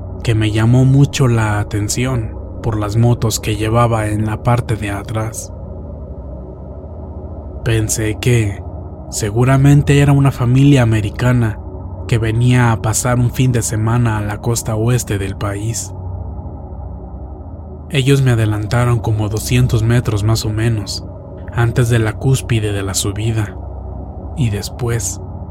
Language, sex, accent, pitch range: Spanish, male, Mexican, 95-120 Hz